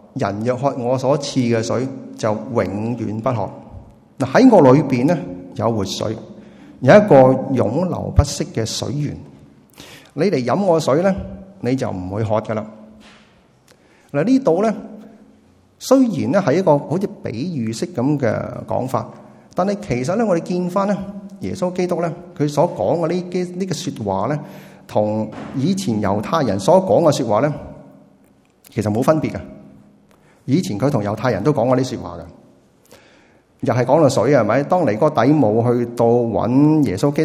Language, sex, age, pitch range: Chinese, male, 30-49, 105-160 Hz